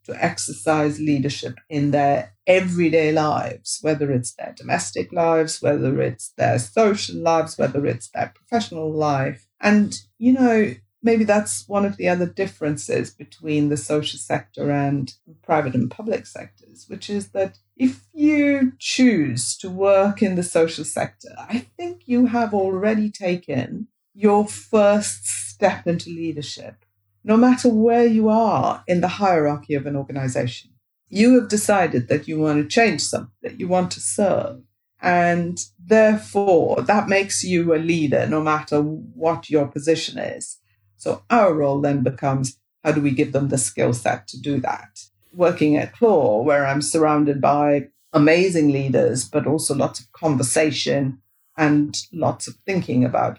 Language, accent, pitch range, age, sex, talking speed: English, British, 140-200 Hz, 50-69, female, 155 wpm